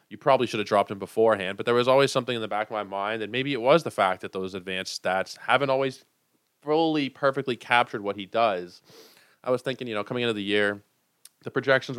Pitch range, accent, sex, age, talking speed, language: 100-125 Hz, American, male, 20-39, 235 wpm, English